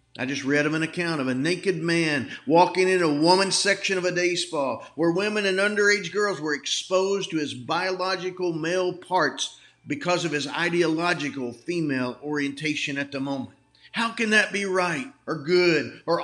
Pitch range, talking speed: 160-195 Hz, 175 wpm